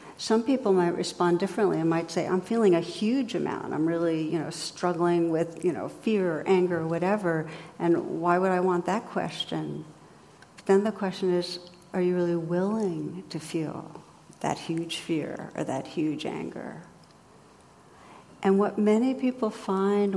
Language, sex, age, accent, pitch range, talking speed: English, female, 60-79, American, 170-190 Hz, 165 wpm